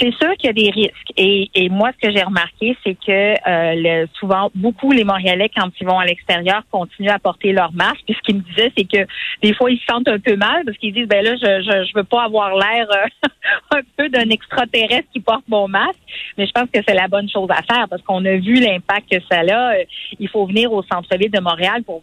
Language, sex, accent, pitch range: French, female, Canadian, 180-235 Hz